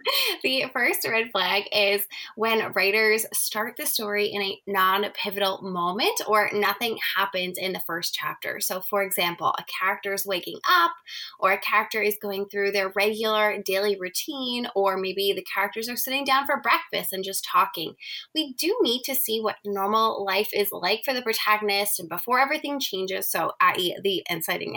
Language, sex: English, female